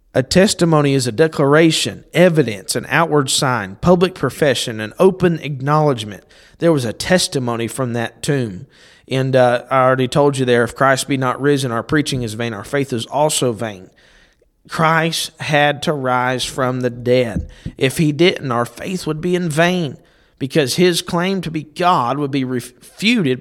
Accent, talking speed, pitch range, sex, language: American, 170 wpm, 130-170 Hz, male, English